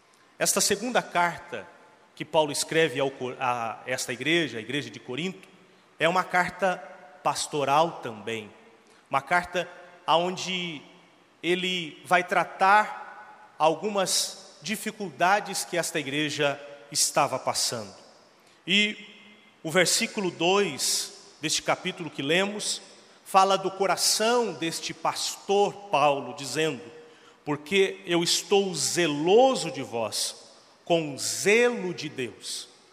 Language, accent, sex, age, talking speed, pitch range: Portuguese, Brazilian, male, 40-59, 100 wpm, 150-200 Hz